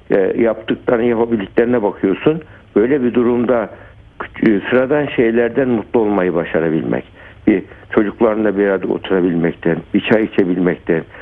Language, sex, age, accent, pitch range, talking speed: Turkish, male, 60-79, native, 90-110 Hz, 100 wpm